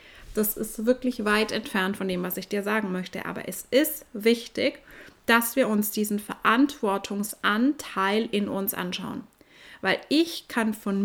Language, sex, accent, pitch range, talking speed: German, female, German, 205-260 Hz, 150 wpm